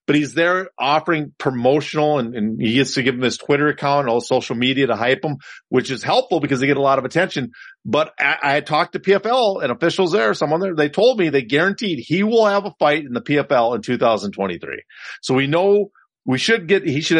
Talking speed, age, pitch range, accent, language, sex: 230 wpm, 40-59, 130-185 Hz, American, English, male